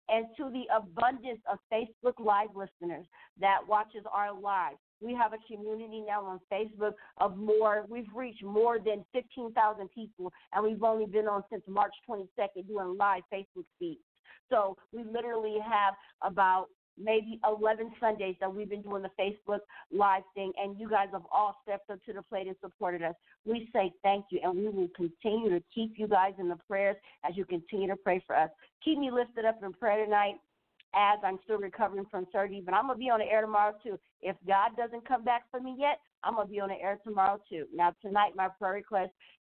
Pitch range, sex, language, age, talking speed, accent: 195-220 Hz, female, English, 50-69, 205 wpm, American